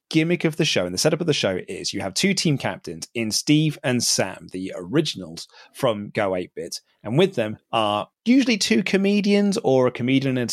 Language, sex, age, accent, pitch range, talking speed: English, male, 30-49, British, 110-165 Hz, 215 wpm